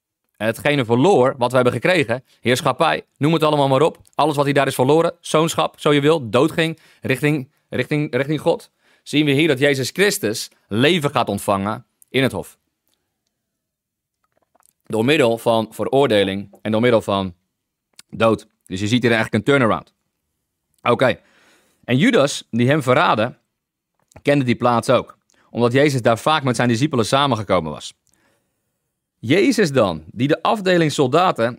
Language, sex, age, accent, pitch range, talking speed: English, male, 40-59, Dutch, 120-155 Hz, 150 wpm